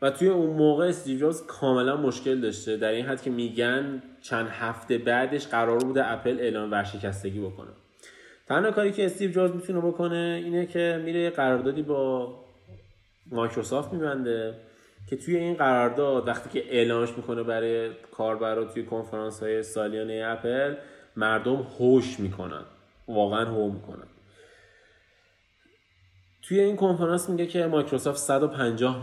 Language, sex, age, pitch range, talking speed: Persian, male, 20-39, 110-135 Hz, 130 wpm